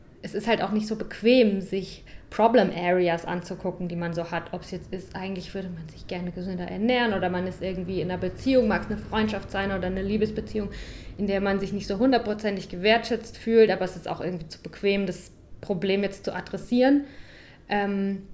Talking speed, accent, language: 205 wpm, German, German